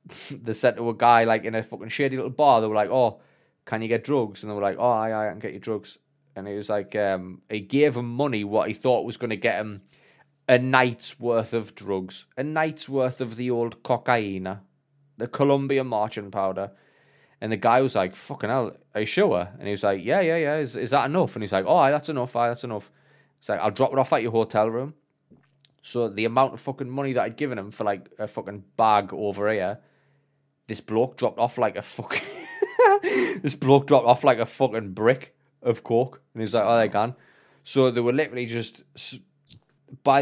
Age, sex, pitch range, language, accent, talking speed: 20-39, male, 110-140 Hz, English, British, 225 wpm